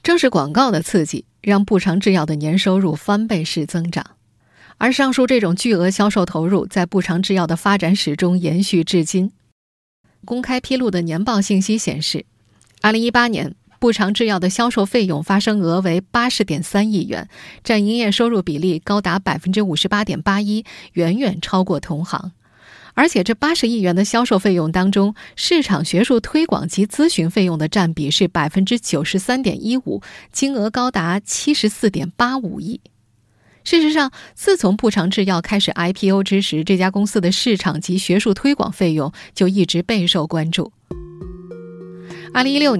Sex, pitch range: female, 175-220 Hz